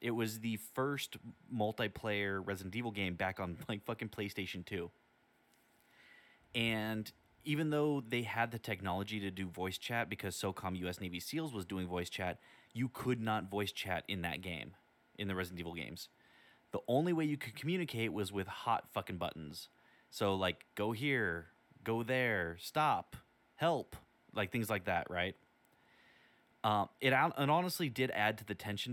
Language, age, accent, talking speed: English, 30-49, American, 170 wpm